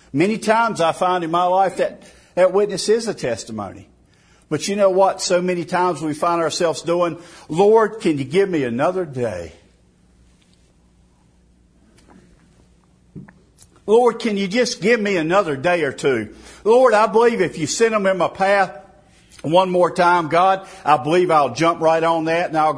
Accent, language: American, English